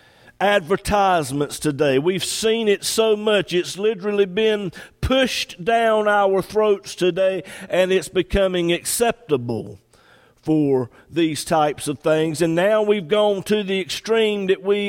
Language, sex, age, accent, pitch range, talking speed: English, male, 50-69, American, 170-210 Hz, 135 wpm